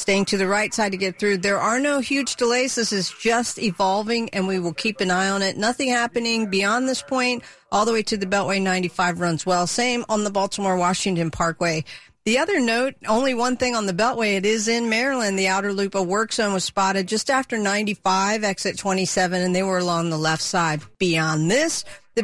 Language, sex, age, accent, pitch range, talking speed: English, female, 40-59, American, 185-230 Hz, 215 wpm